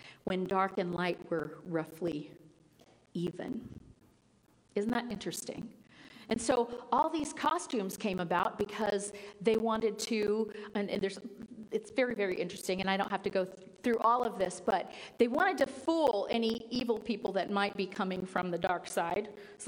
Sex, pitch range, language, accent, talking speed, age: female, 195-255 Hz, English, American, 170 wpm, 40-59